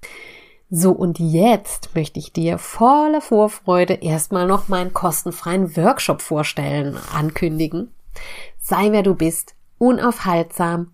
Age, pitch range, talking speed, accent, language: 30-49, 165-215 Hz, 110 wpm, German, German